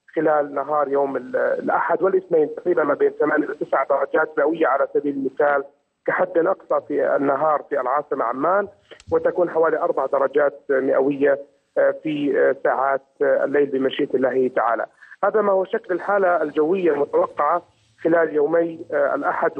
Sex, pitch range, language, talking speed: male, 150-195 Hz, Arabic, 135 wpm